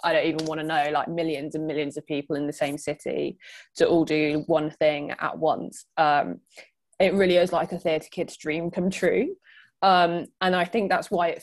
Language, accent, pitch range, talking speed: English, British, 155-190 Hz, 215 wpm